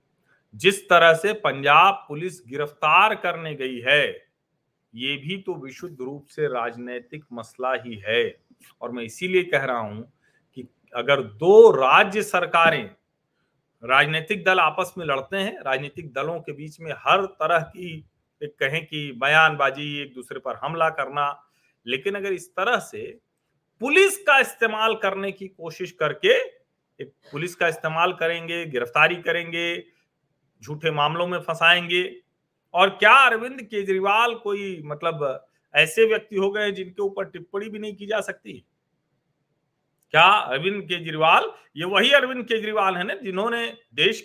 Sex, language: male, Hindi